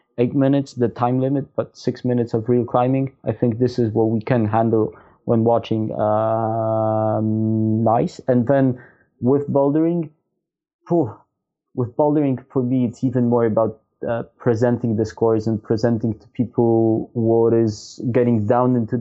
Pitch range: 110-125 Hz